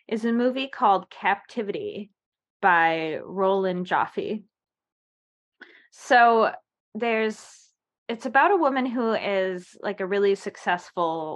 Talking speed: 105 wpm